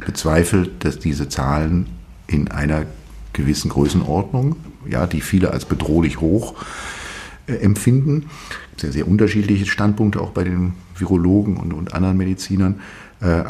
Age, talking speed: 50-69, 135 wpm